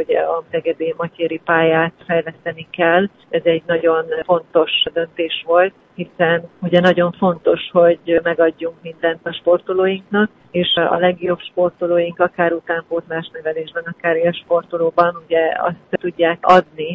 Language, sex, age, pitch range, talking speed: Hungarian, female, 40-59, 160-175 Hz, 125 wpm